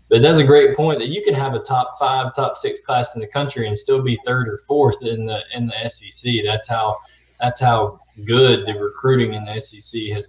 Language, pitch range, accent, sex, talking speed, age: English, 110-130 Hz, American, male, 235 wpm, 20-39